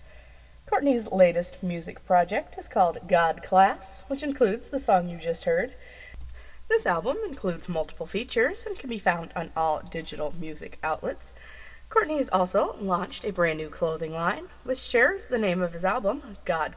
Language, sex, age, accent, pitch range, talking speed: English, female, 30-49, American, 170-240 Hz, 165 wpm